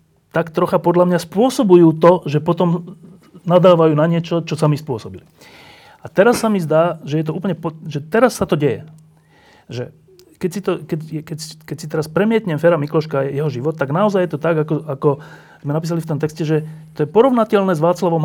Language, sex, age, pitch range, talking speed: Slovak, male, 30-49, 135-175 Hz, 205 wpm